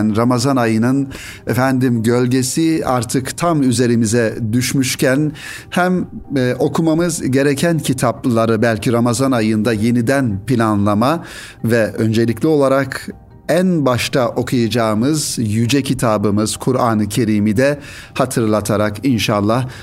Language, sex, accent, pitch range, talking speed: Turkish, male, native, 110-140 Hz, 90 wpm